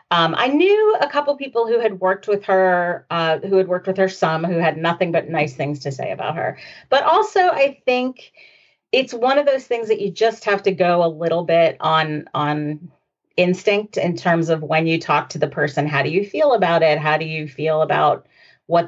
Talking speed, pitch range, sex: 225 wpm, 160-220 Hz, female